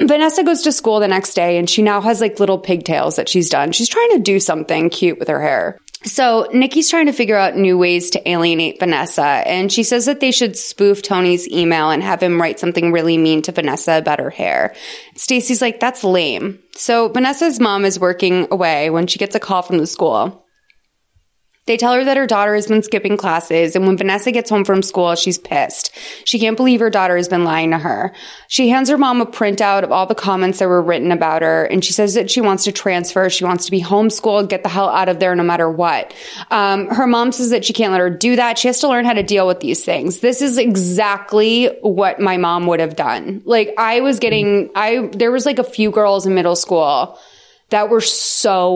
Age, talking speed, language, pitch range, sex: 20-39, 235 wpm, English, 180-235 Hz, female